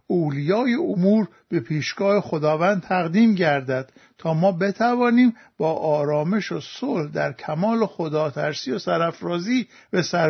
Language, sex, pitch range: Persian, male, 160-220 Hz